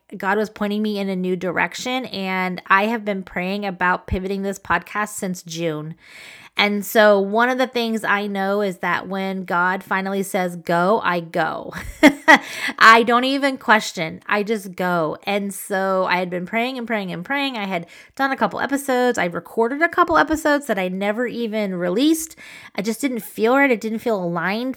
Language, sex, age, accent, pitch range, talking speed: English, female, 20-39, American, 190-240 Hz, 190 wpm